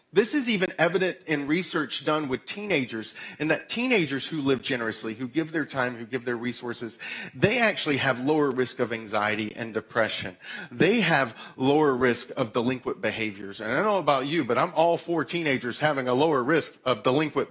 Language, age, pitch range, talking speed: English, 40-59, 130-185 Hz, 190 wpm